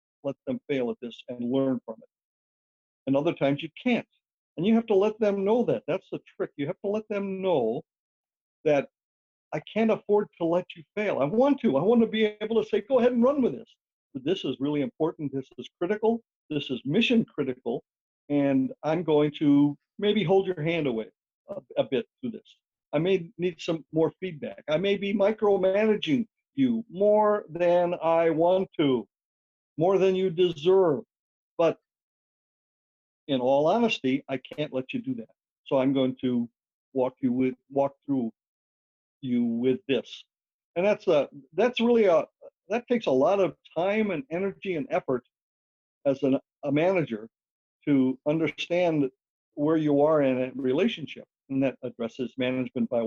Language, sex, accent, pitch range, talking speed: English, male, American, 135-210 Hz, 175 wpm